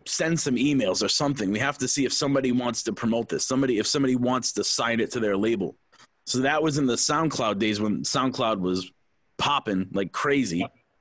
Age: 30-49